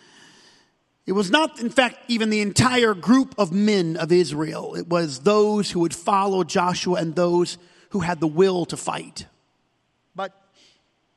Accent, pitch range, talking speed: American, 180-230 Hz, 155 wpm